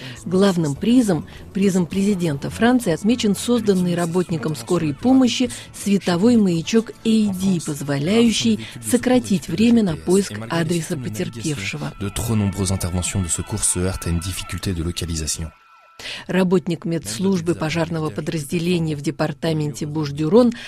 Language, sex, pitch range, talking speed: Russian, female, 160-220 Hz, 80 wpm